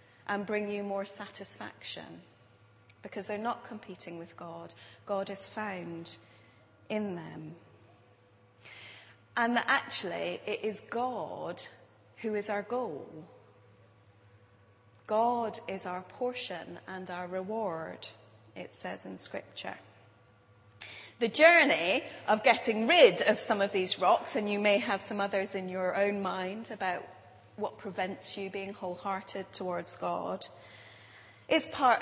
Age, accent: 30-49, British